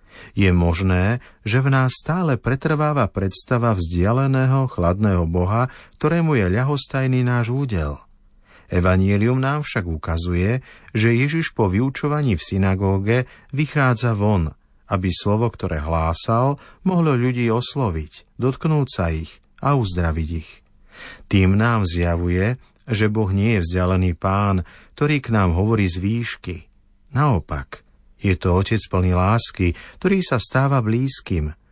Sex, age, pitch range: male, 50-69, 90-125 Hz